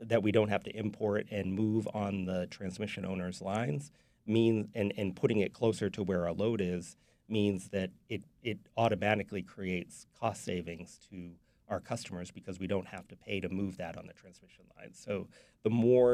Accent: American